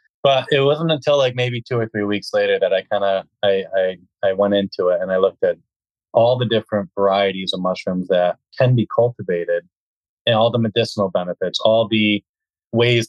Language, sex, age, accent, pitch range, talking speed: English, male, 20-39, American, 95-115 Hz, 195 wpm